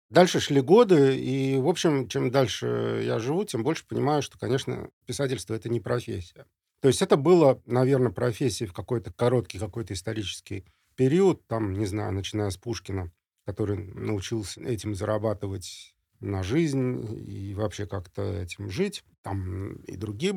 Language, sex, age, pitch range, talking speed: Russian, male, 40-59, 100-130 Hz, 150 wpm